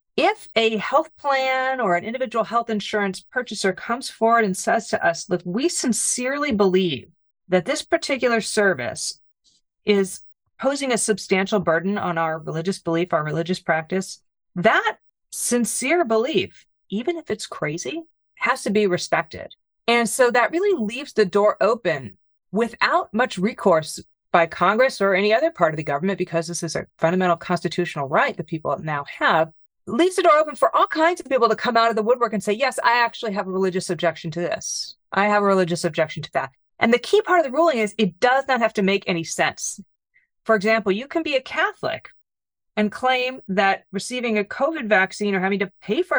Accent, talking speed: American, 190 wpm